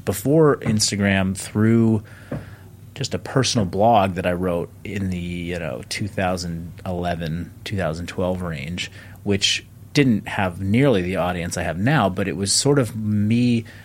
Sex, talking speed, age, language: male, 140 wpm, 30-49, English